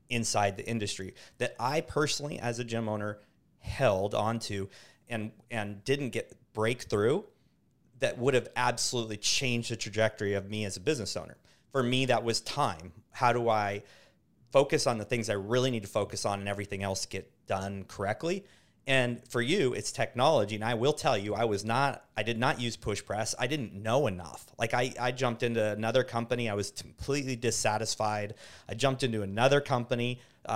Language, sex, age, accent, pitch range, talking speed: English, male, 30-49, American, 105-130 Hz, 185 wpm